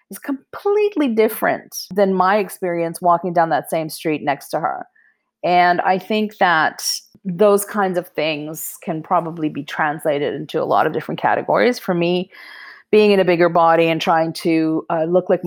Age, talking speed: 40-59, 175 wpm